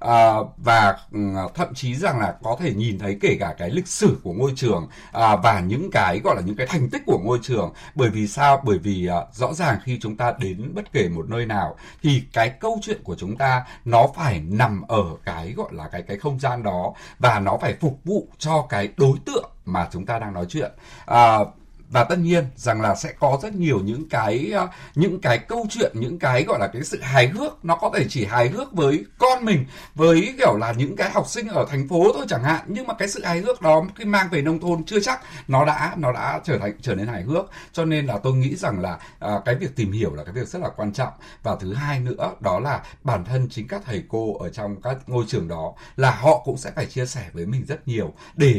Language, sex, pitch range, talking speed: Vietnamese, male, 110-160 Hz, 245 wpm